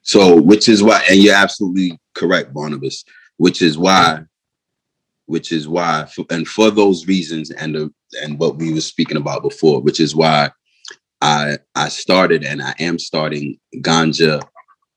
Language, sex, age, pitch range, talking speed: English, male, 30-49, 75-90 Hz, 155 wpm